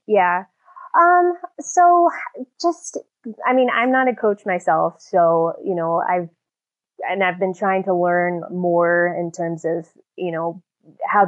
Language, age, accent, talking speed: English, 10-29, American, 150 wpm